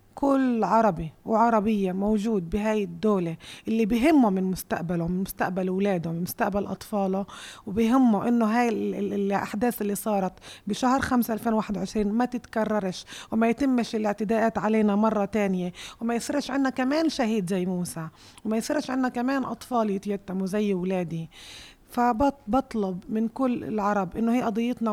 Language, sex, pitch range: Arabic, female, 205-245 Hz